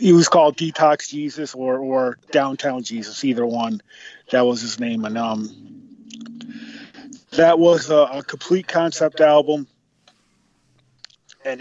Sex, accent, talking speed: male, American, 130 wpm